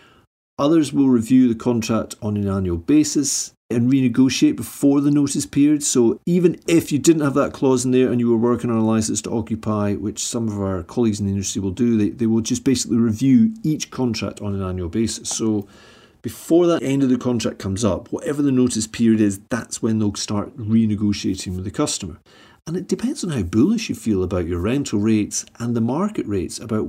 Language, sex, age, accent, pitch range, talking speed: English, male, 40-59, British, 105-135 Hz, 210 wpm